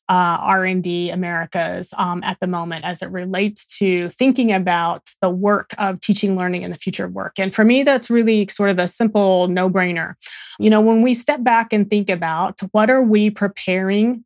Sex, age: female, 30-49